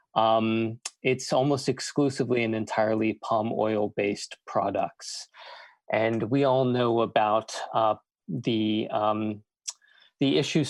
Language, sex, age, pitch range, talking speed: English, male, 20-39, 110-130 Hz, 105 wpm